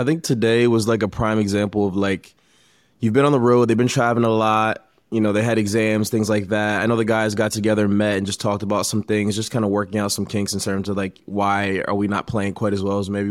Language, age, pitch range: English, 20-39, 105-125 Hz